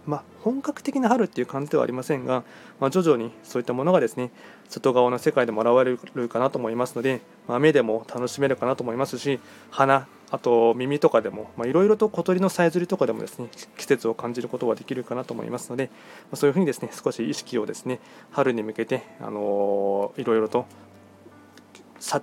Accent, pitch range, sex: native, 125-185 Hz, male